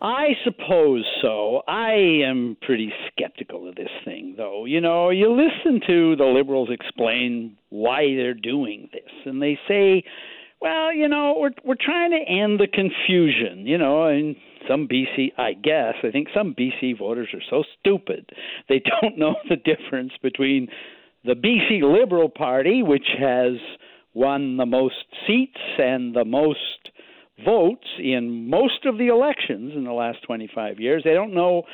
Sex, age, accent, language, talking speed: male, 60-79, American, English, 165 wpm